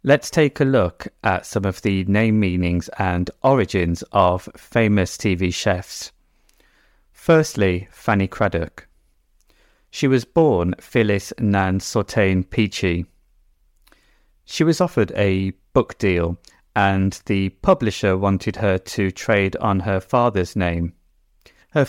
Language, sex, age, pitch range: English, male, 30-49, 90-115 Hz